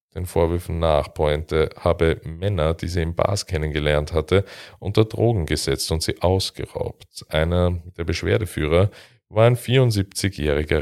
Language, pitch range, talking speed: German, 80-110 Hz, 135 wpm